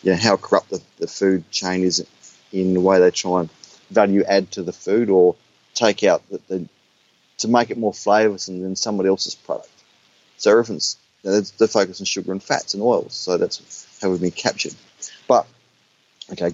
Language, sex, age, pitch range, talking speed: English, male, 30-49, 95-115 Hz, 195 wpm